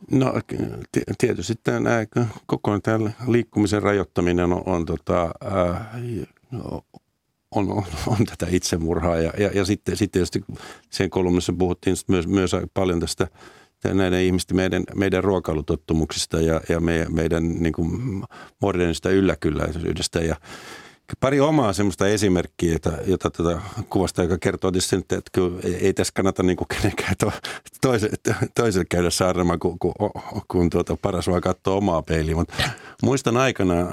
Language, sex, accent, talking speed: Finnish, male, native, 125 wpm